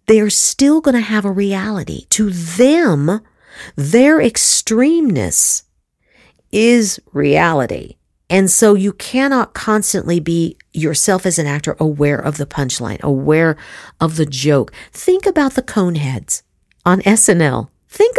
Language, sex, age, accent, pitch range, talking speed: English, female, 50-69, American, 155-245 Hz, 125 wpm